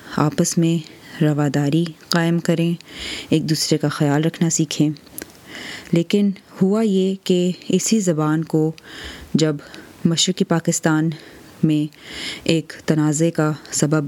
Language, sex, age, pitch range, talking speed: Urdu, female, 20-39, 150-170 Hz, 110 wpm